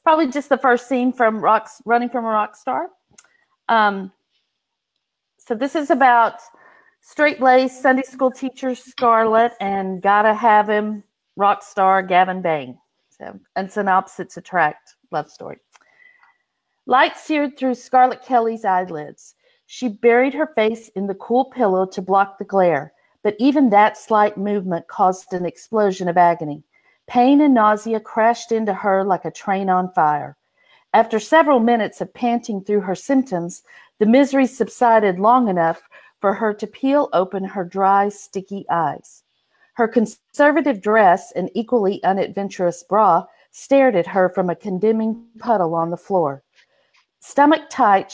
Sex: female